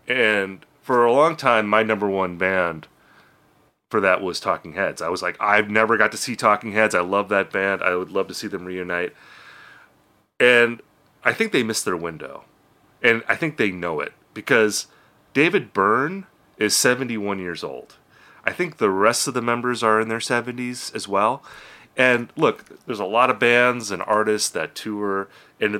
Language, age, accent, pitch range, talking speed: English, 30-49, American, 95-125 Hz, 185 wpm